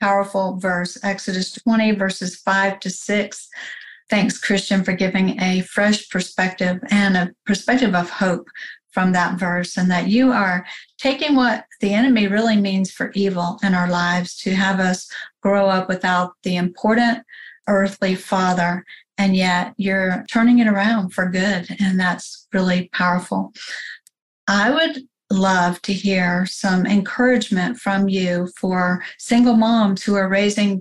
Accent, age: American, 50-69